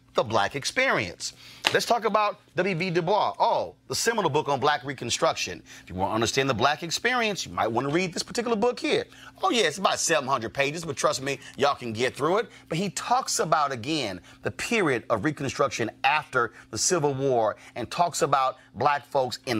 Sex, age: male, 30-49